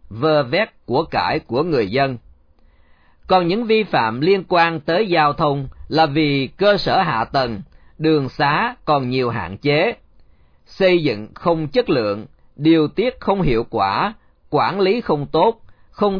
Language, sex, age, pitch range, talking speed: Vietnamese, male, 40-59, 125-185 Hz, 160 wpm